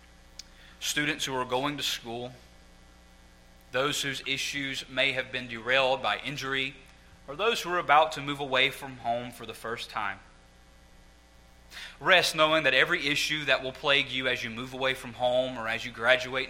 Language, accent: English, American